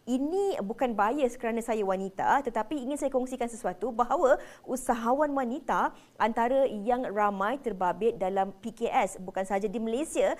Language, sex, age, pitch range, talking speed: Malay, female, 20-39, 220-275 Hz, 140 wpm